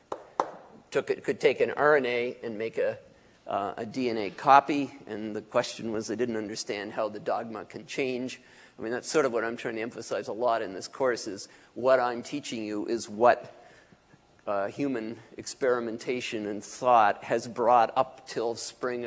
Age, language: 50-69, English